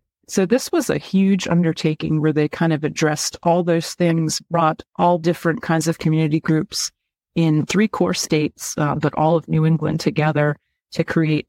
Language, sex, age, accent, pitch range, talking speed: English, female, 40-59, American, 155-170 Hz, 180 wpm